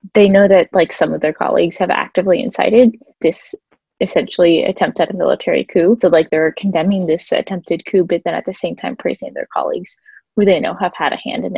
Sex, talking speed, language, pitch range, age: female, 220 wpm, English, 170-205 Hz, 10-29